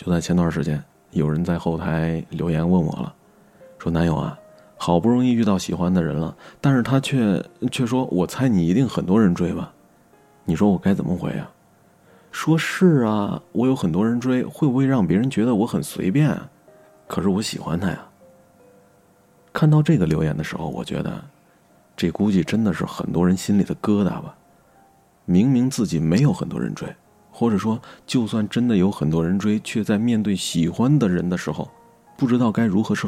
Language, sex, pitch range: Chinese, male, 85-140 Hz